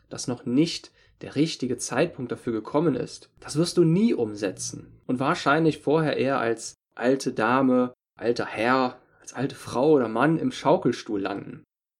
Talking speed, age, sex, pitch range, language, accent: 155 wpm, 10-29, male, 110-135 Hz, German, German